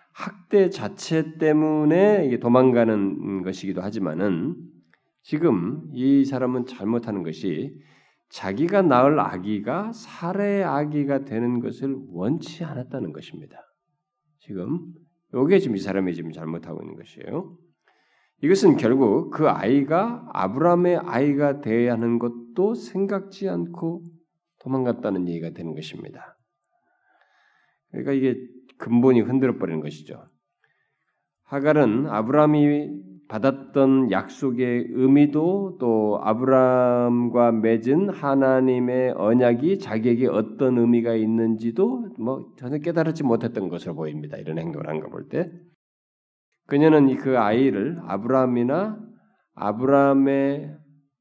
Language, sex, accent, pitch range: Korean, male, native, 115-165 Hz